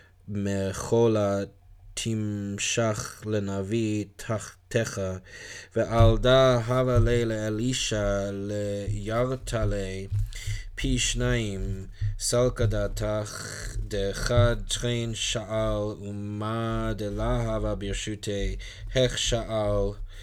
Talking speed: 70 wpm